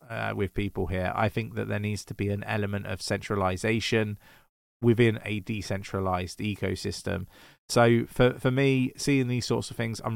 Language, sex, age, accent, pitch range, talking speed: English, male, 20-39, British, 95-115 Hz, 170 wpm